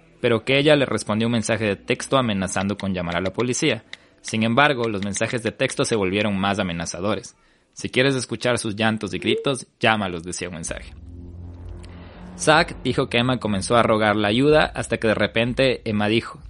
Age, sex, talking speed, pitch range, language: 20-39, male, 185 wpm, 90-120 Hz, Spanish